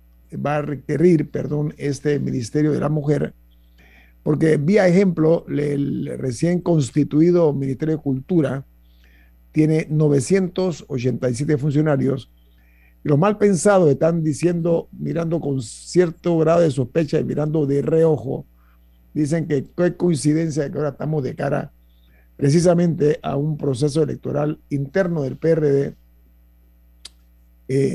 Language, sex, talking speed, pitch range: Spanish, male, 120 wpm, 130-160 Hz